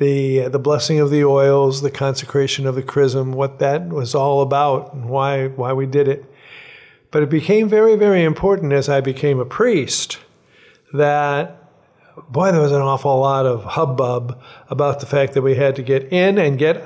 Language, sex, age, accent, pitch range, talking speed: English, male, 50-69, American, 135-150 Hz, 190 wpm